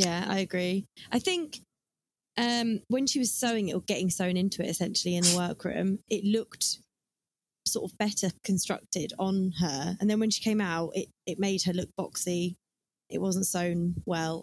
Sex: female